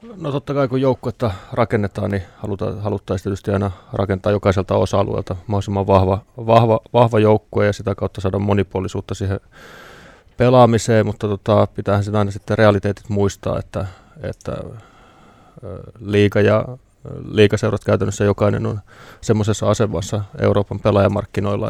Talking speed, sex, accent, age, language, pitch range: 125 wpm, male, native, 20-39, Finnish, 100-110 Hz